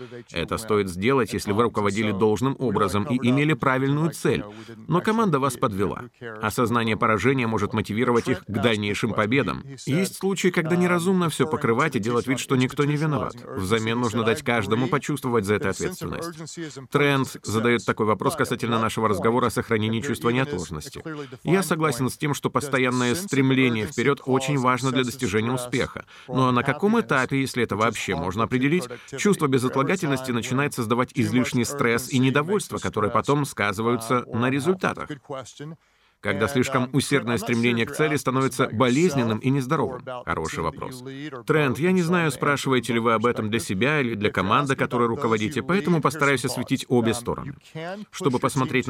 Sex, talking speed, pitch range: male, 155 wpm, 115-140 Hz